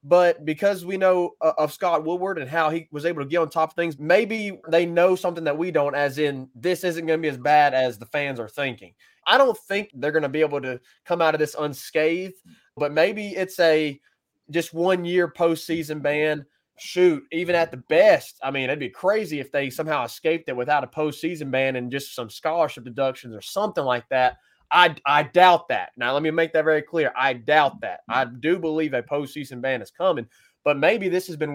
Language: English